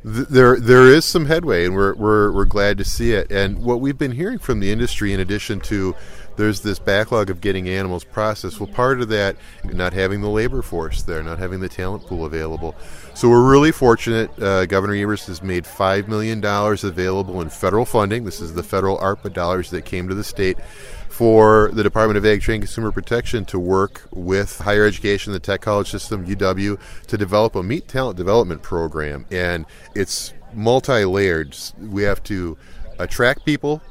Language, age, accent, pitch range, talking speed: English, 30-49, American, 90-110 Hz, 190 wpm